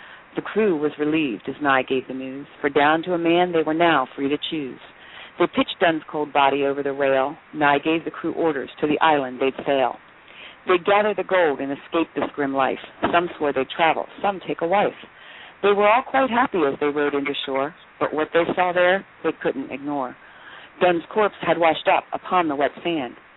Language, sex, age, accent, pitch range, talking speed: English, female, 40-59, American, 140-180 Hz, 210 wpm